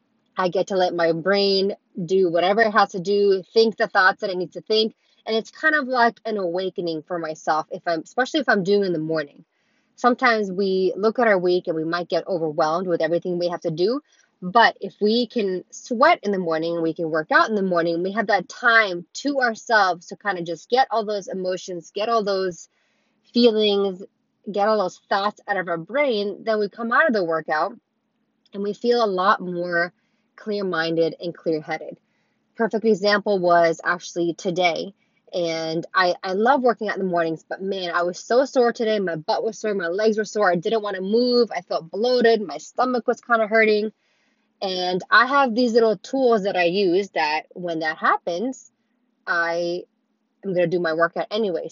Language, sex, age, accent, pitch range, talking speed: English, female, 20-39, American, 175-230 Hz, 205 wpm